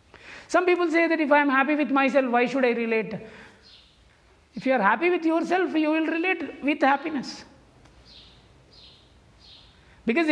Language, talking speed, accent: English, 150 wpm, Indian